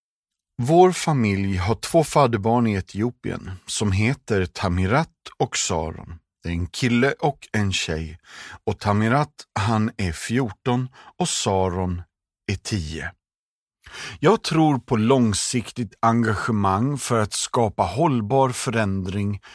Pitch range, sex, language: 105-135 Hz, male, Swedish